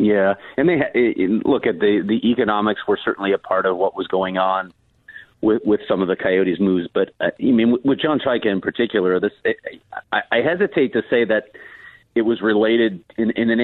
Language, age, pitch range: English, 40-59, 100-120 Hz